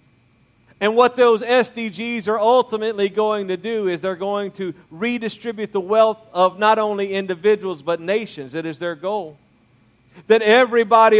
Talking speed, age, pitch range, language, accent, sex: 150 wpm, 50-69, 170-220 Hz, English, American, male